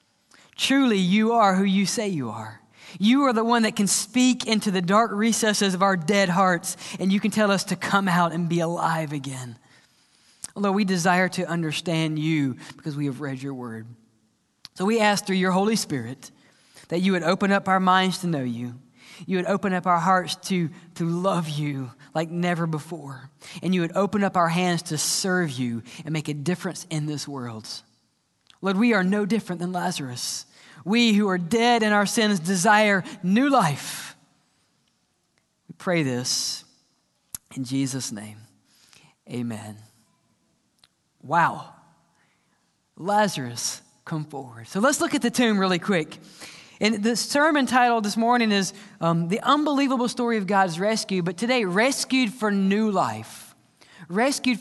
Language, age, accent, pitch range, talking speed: English, 20-39, American, 150-210 Hz, 165 wpm